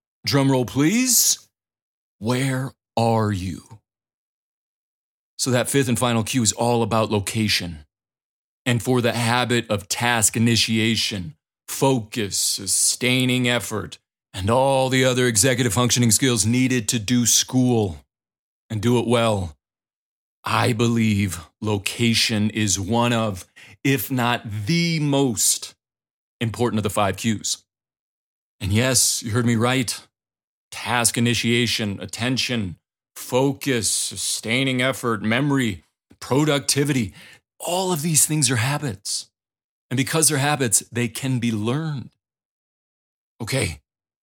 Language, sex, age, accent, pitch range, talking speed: English, male, 30-49, American, 110-130 Hz, 115 wpm